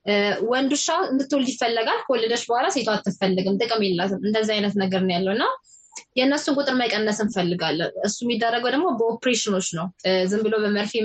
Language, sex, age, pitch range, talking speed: Amharic, female, 20-39, 205-245 Hz, 115 wpm